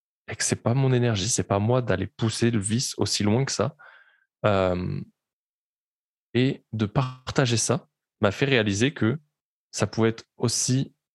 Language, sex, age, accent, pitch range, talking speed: French, male, 20-39, French, 105-125 Hz, 170 wpm